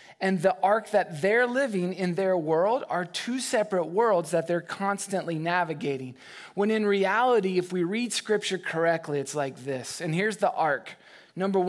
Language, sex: English, male